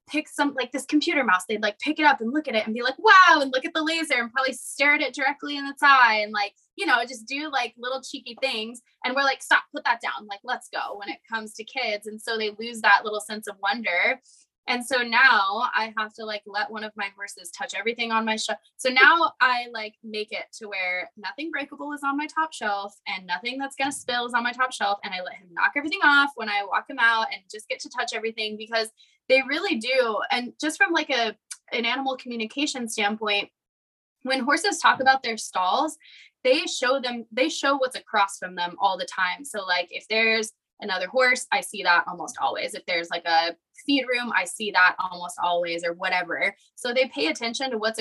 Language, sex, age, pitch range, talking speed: English, female, 20-39, 210-275 Hz, 235 wpm